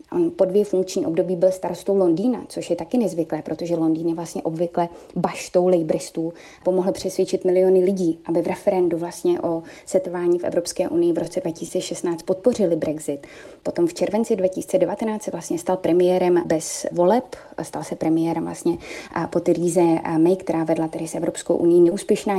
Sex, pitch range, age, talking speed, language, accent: female, 170-190 Hz, 20-39, 160 wpm, Czech, native